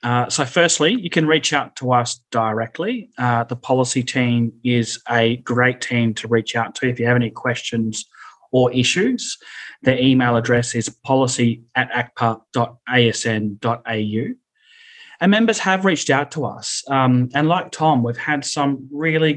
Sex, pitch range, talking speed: male, 115-140 Hz, 155 wpm